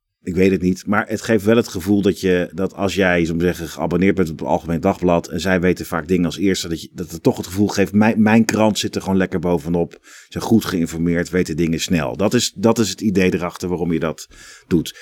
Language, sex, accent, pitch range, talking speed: Dutch, male, Dutch, 80-100 Hz, 250 wpm